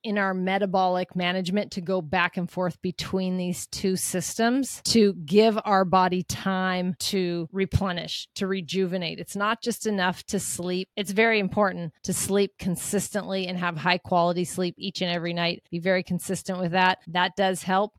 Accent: American